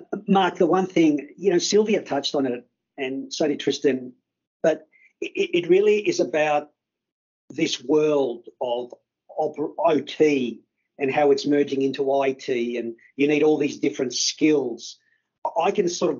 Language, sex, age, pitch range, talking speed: English, male, 50-69, 145-180 Hz, 150 wpm